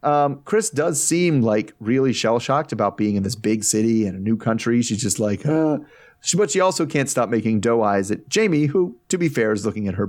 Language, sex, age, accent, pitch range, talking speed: English, male, 30-49, American, 110-145 Hz, 225 wpm